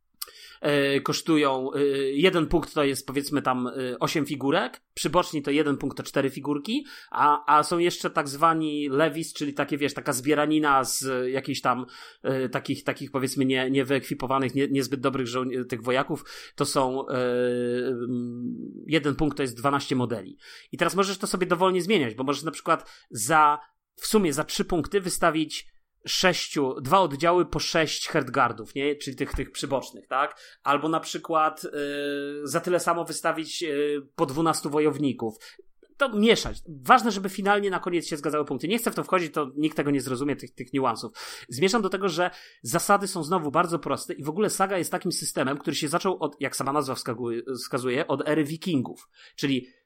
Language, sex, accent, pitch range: Polish, male, native, 135-170 Hz